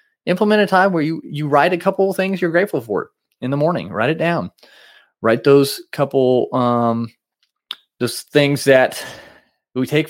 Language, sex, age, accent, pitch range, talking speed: English, male, 20-39, American, 110-145 Hz, 170 wpm